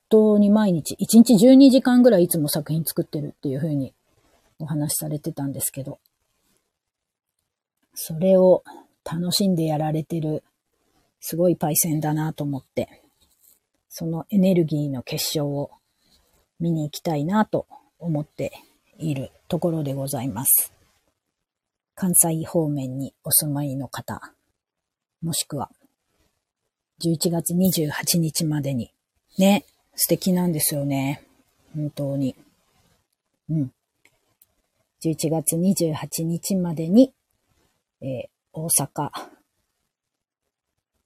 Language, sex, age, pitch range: Japanese, female, 40-59, 145-175 Hz